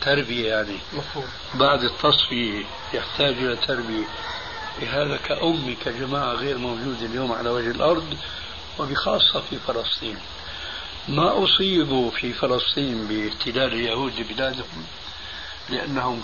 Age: 60-79